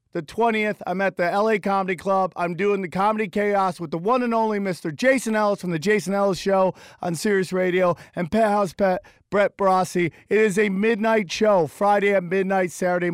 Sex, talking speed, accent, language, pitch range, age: male, 200 wpm, American, English, 180-220 Hz, 40-59